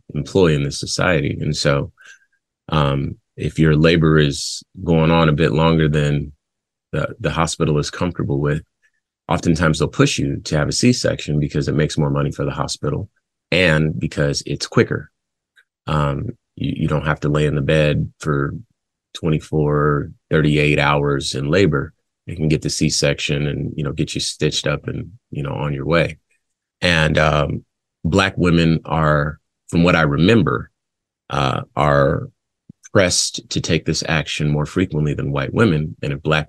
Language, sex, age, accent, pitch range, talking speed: English, male, 30-49, American, 75-80 Hz, 165 wpm